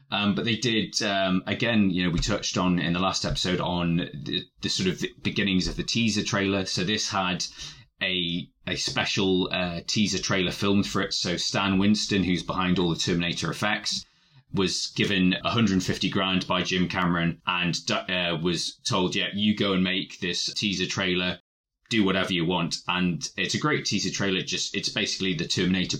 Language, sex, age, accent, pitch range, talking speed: English, male, 20-39, British, 90-105 Hz, 185 wpm